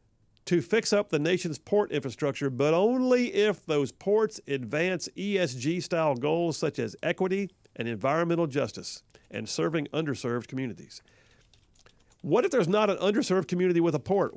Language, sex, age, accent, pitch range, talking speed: English, male, 50-69, American, 130-175 Hz, 145 wpm